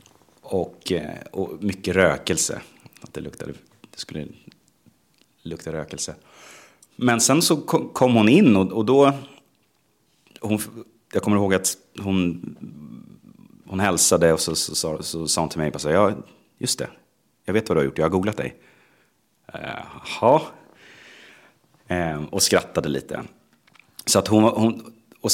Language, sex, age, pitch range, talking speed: Swedish, male, 30-49, 80-110 Hz, 150 wpm